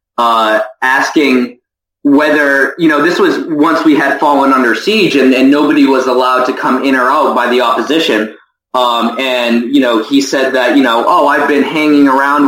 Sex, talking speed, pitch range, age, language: male, 190 wpm, 120-145 Hz, 20-39, English